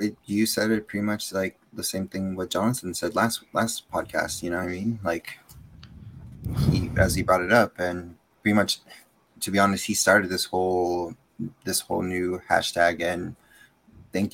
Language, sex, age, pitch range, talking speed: English, male, 20-39, 90-105 Hz, 185 wpm